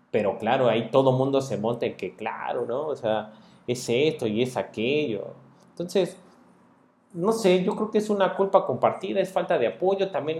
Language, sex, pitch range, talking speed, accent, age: Spanish, male, 150-195 Hz, 190 wpm, Mexican, 30-49